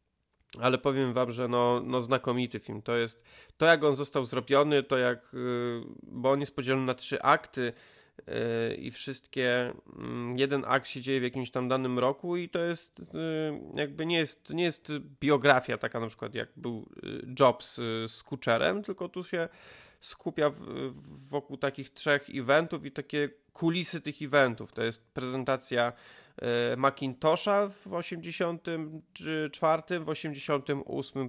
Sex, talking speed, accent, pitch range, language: male, 140 wpm, native, 125-155 Hz, Polish